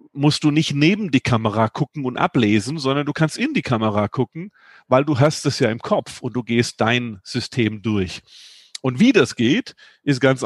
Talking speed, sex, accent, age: 200 wpm, male, German, 40-59